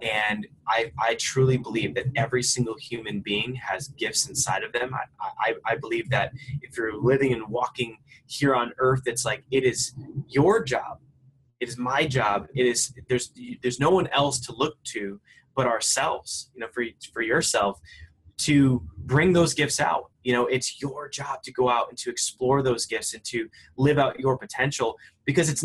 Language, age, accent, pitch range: English, 20-39, American, 120-140 Hz